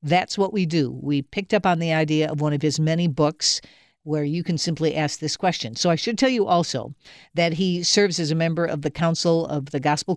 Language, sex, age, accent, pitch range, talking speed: English, female, 50-69, American, 150-180 Hz, 240 wpm